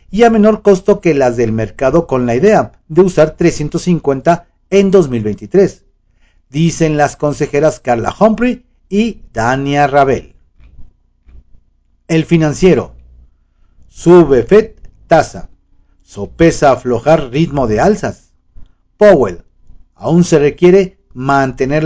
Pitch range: 110-170 Hz